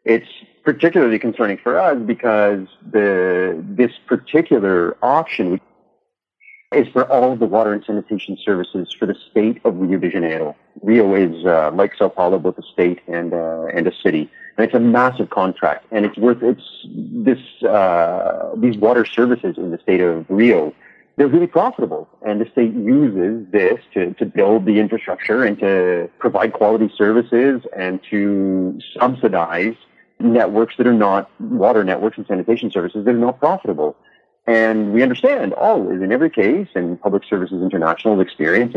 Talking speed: 160 wpm